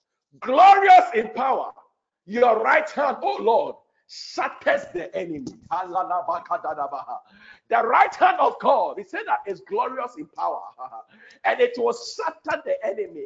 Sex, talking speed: male, 130 wpm